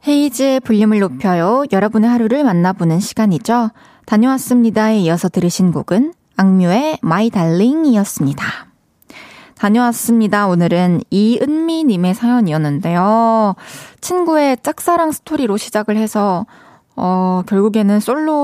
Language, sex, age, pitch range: Korean, female, 20-39, 180-245 Hz